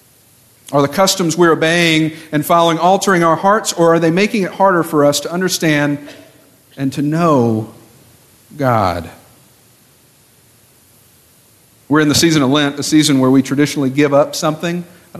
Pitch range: 125-160 Hz